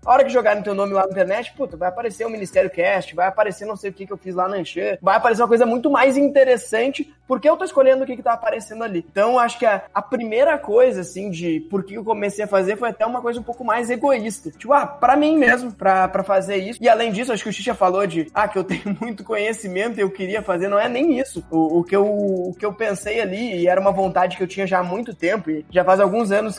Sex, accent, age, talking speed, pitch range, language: male, Brazilian, 20-39, 280 wpm, 190-245 Hz, Portuguese